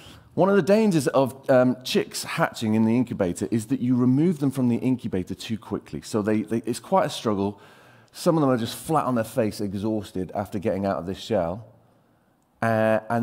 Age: 30-49